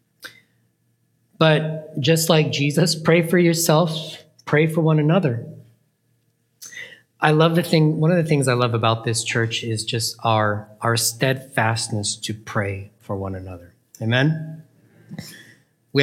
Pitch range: 120-160 Hz